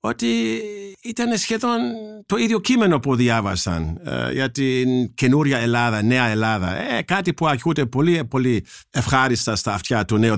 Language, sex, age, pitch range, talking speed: Greek, male, 50-69, 105-150 Hz, 150 wpm